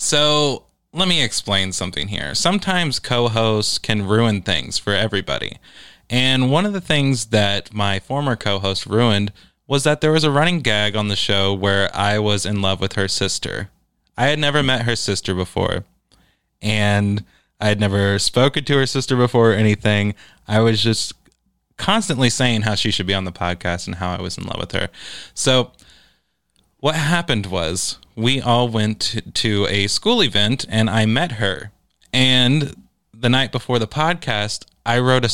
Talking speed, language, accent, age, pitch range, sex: 175 wpm, English, American, 20-39, 100-125 Hz, male